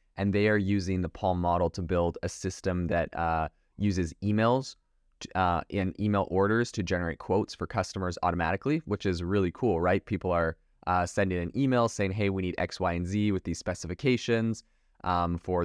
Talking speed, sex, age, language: 190 wpm, male, 20-39, English